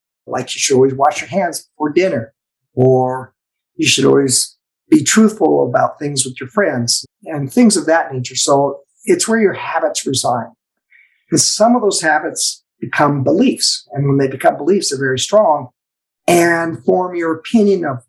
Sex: male